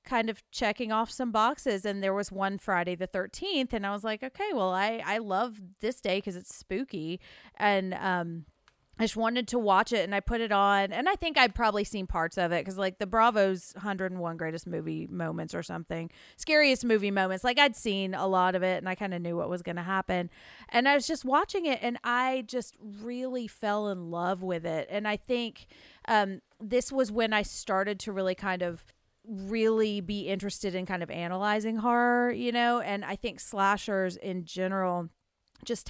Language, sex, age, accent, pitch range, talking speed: English, female, 30-49, American, 185-235 Hz, 205 wpm